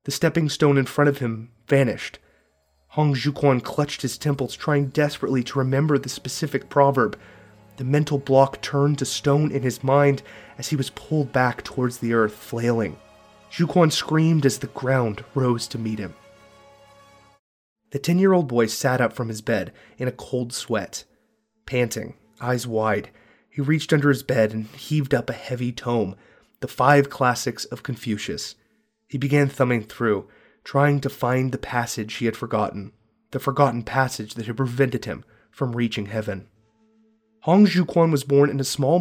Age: 30-49